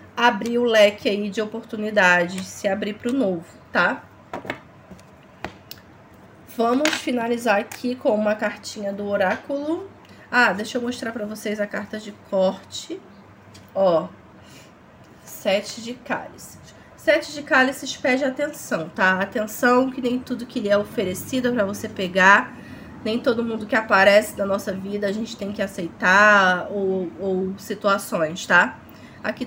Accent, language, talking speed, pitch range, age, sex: Brazilian, Portuguese, 140 wpm, 200-250 Hz, 20-39, female